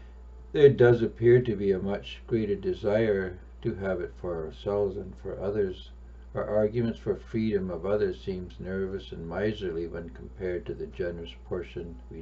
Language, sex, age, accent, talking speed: English, male, 60-79, American, 165 wpm